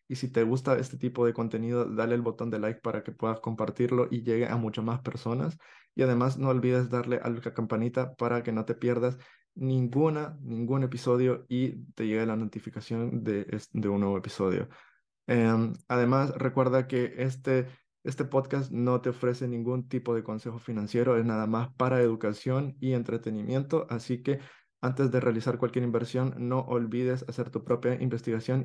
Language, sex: English, male